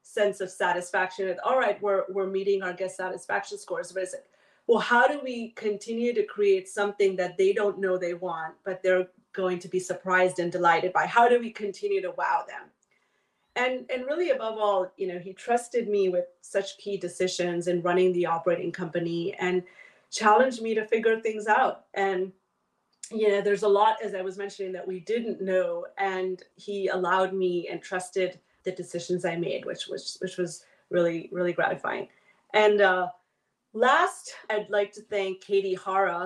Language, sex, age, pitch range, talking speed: English, female, 30-49, 180-205 Hz, 185 wpm